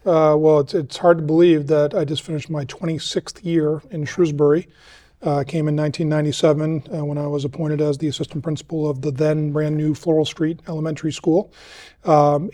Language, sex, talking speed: English, male, 185 wpm